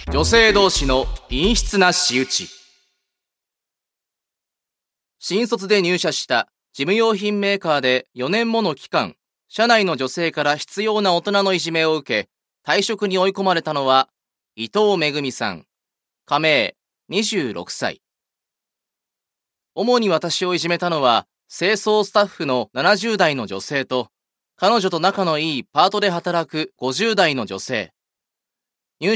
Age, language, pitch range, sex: 30-49, Japanese, 145-200 Hz, male